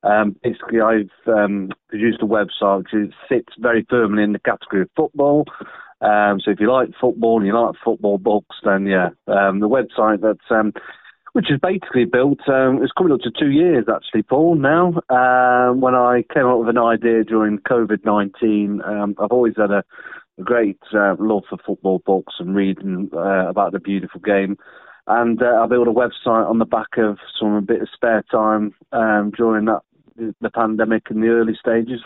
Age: 30-49